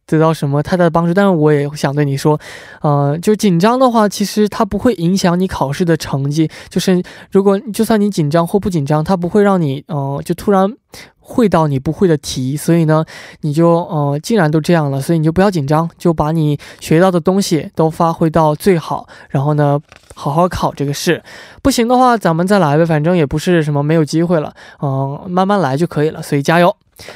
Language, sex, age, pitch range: Korean, male, 20-39, 155-200 Hz